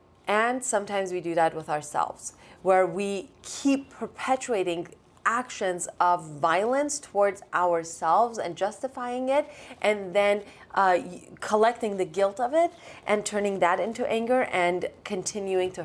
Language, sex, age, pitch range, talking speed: English, female, 30-49, 190-245 Hz, 135 wpm